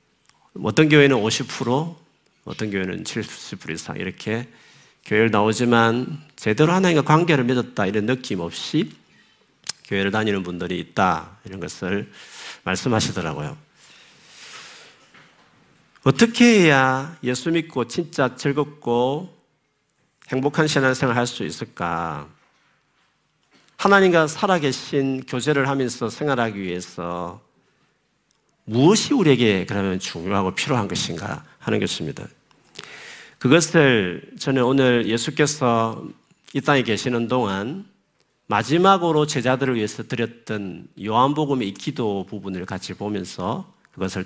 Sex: male